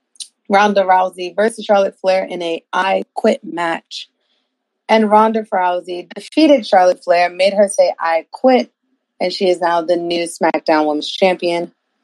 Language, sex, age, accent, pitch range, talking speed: English, female, 30-49, American, 165-215 Hz, 150 wpm